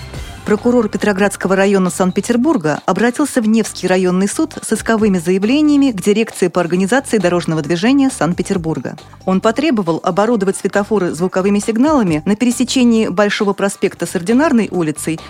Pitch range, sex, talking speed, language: 180-245 Hz, female, 125 wpm, Russian